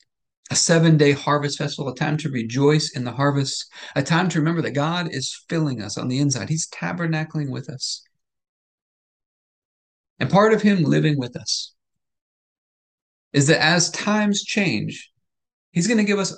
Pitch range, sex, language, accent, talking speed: 140-170 Hz, male, English, American, 160 wpm